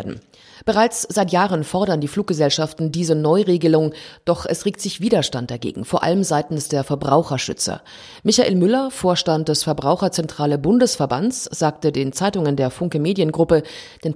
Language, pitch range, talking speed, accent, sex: German, 145-195 Hz, 135 wpm, German, female